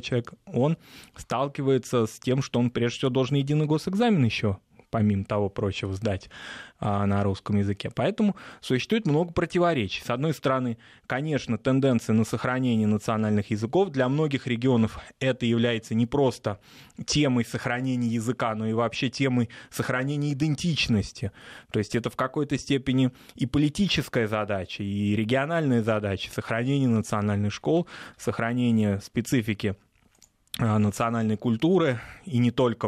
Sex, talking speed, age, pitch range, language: male, 130 wpm, 20-39, 105-135 Hz, Russian